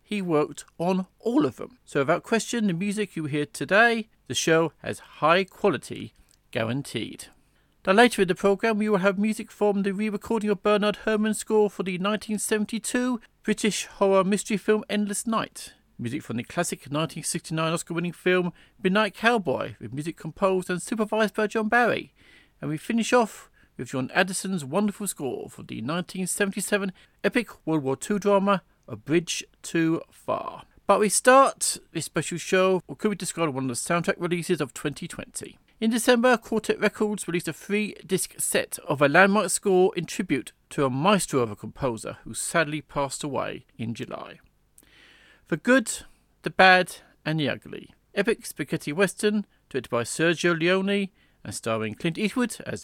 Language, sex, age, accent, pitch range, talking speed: English, male, 40-59, British, 160-210 Hz, 165 wpm